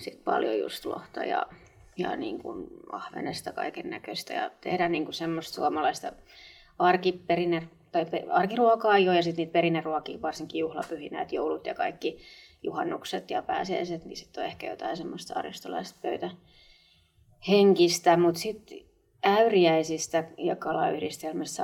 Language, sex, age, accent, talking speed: Finnish, female, 20-39, native, 125 wpm